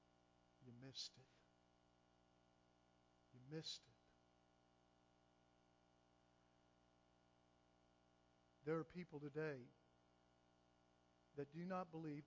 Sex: male